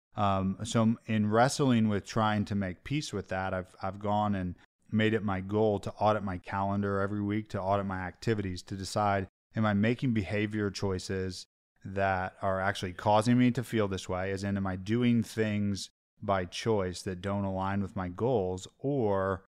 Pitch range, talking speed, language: 95-115 Hz, 185 wpm, English